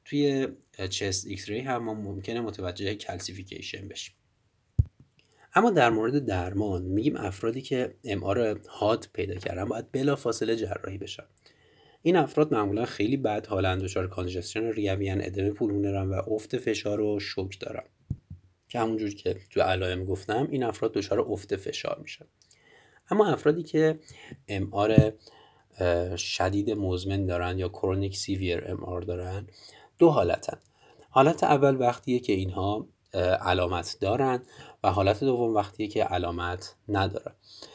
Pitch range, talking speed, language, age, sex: 95-130 Hz, 130 wpm, Persian, 30-49, male